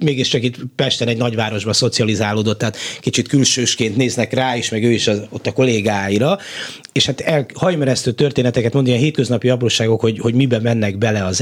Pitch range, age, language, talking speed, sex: 110-150 Hz, 30-49, Hungarian, 180 wpm, male